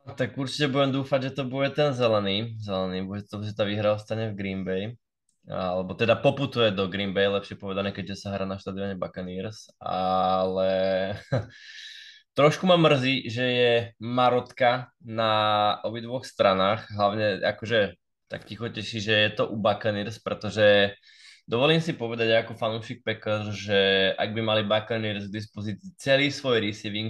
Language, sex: Slovak, male